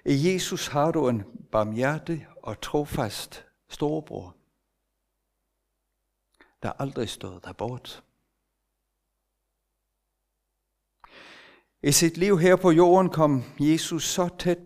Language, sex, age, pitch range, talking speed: Danish, male, 60-79, 120-165 Hz, 100 wpm